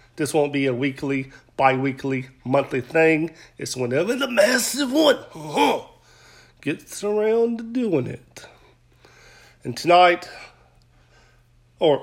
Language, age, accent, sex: English, 40-59, American, male